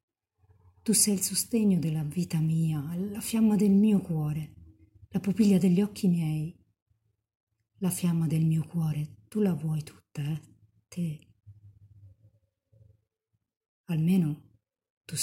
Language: Italian